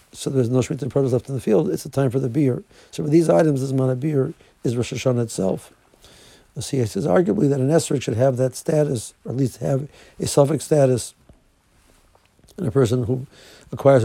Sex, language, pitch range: male, English, 120-145 Hz